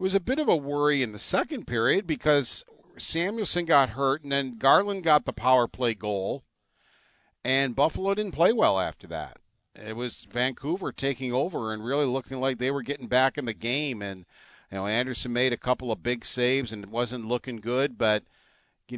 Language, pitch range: English, 110-145 Hz